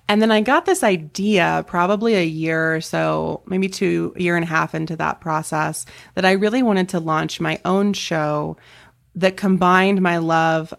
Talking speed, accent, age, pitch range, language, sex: 190 wpm, American, 20-39, 155-185 Hz, English, female